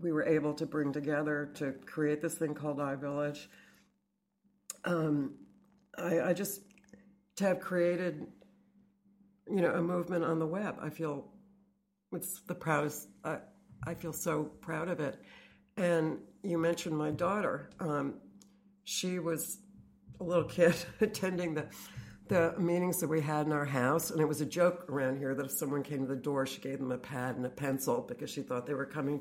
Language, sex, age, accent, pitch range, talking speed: English, female, 60-79, American, 140-180 Hz, 180 wpm